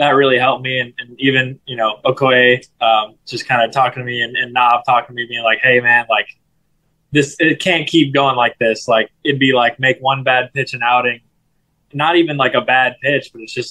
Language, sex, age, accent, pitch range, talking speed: English, male, 20-39, American, 120-140 Hz, 230 wpm